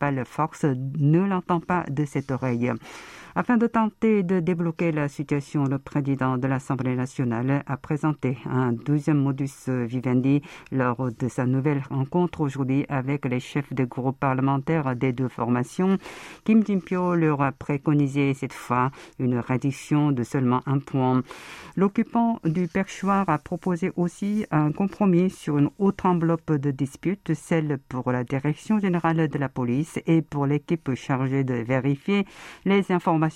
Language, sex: French, female